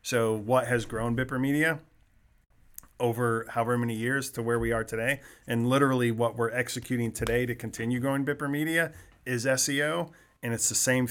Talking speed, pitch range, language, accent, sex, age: 175 wpm, 115-130 Hz, English, American, male, 40-59